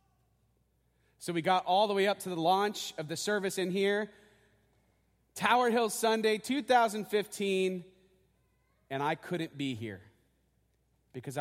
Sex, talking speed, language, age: male, 130 wpm, English, 30-49